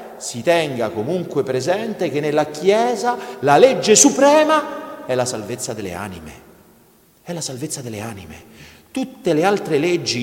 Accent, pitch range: native, 110-175 Hz